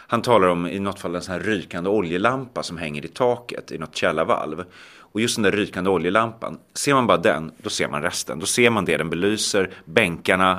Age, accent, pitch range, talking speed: 30-49, Swedish, 95-130 Hz, 220 wpm